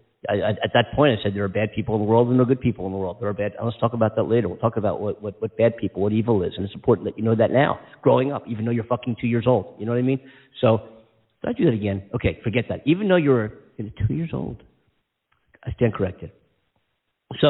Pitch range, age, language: 100-125 Hz, 50-69, English